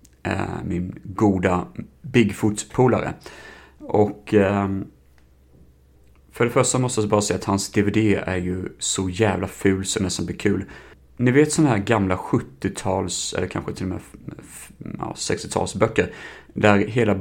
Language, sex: Swedish, male